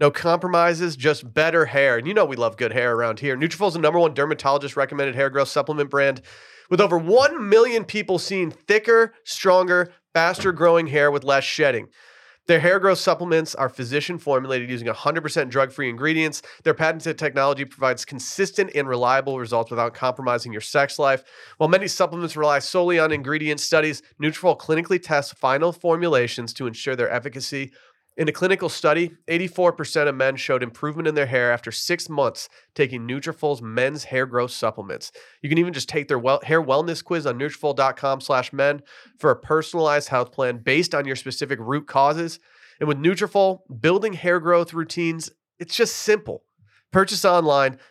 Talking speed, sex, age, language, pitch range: 170 wpm, male, 30-49, English, 135-170 Hz